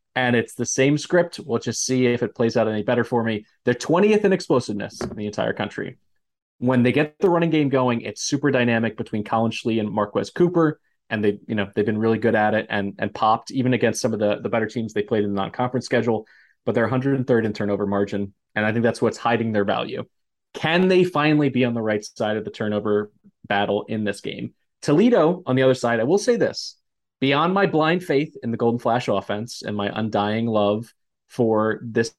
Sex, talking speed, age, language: male, 220 wpm, 20-39, English